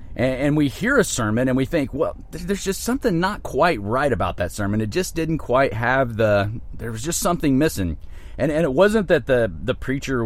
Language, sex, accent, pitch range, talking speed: English, male, American, 105-145 Hz, 215 wpm